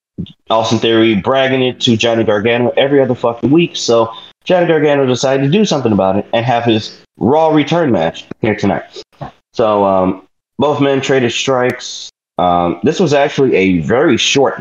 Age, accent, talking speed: 30-49, American, 175 wpm